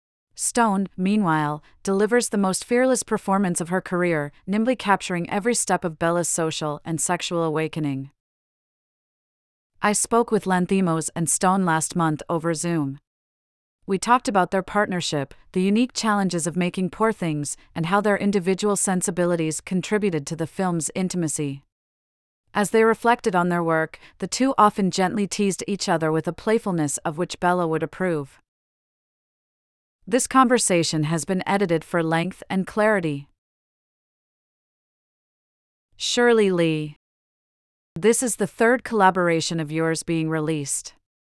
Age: 30-49